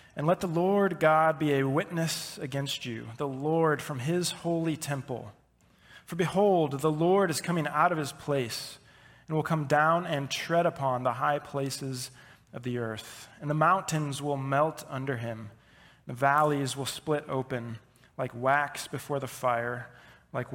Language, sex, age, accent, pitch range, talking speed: English, male, 20-39, American, 130-160 Hz, 170 wpm